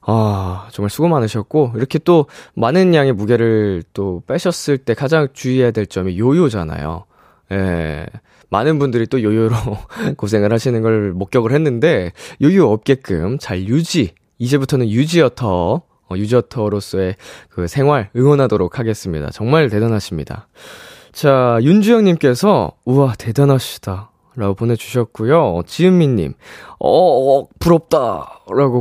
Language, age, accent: Korean, 20-39, native